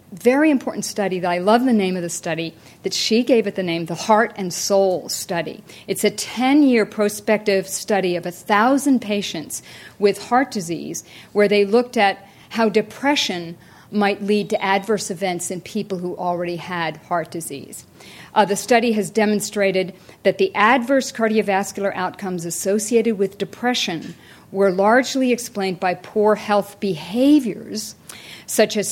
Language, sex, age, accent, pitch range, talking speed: English, female, 50-69, American, 185-220 Hz, 150 wpm